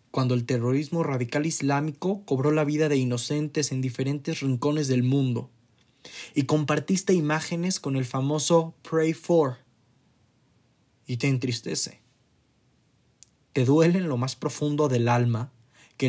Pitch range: 130-165 Hz